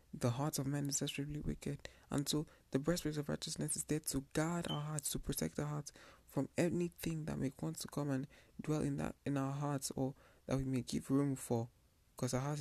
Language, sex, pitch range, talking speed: English, male, 130-155 Hz, 230 wpm